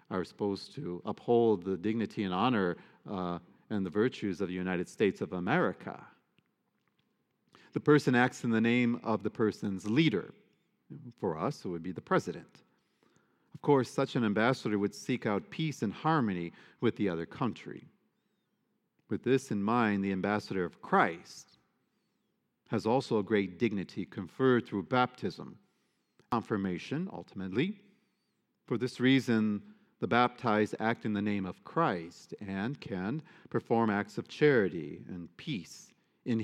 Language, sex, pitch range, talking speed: English, male, 95-125 Hz, 145 wpm